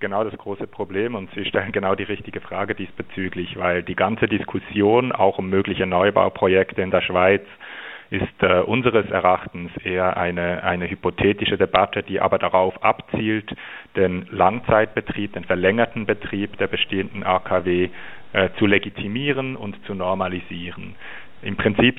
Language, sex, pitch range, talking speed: German, male, 90-100 Hz, 140 wpm